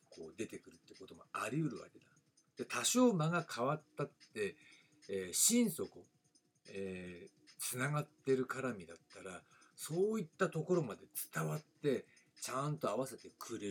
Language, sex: Japanese, male